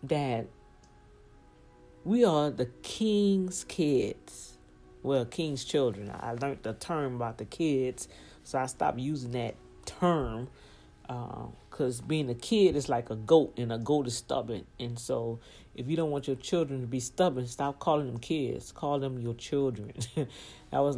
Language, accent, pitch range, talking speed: English, American, 120-165 Hz, 165 wpm